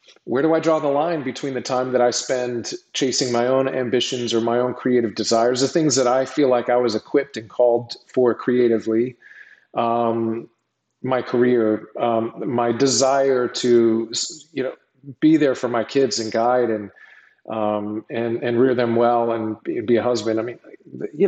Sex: male